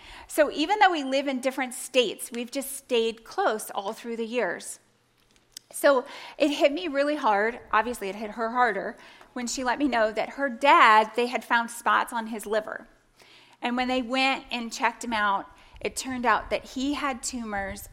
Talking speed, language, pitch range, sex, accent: 190 wpm, English, 220-270 Hz, female, American